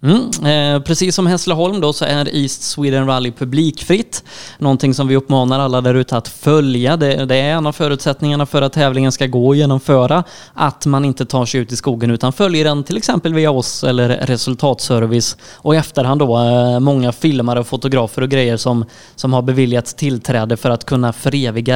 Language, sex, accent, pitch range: Swedish, male, native, 130-155 Hz